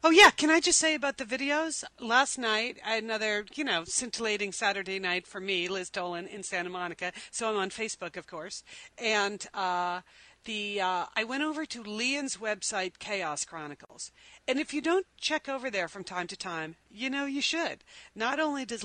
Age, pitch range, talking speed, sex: 40-59, 175-225 Hz, 190 wpm, female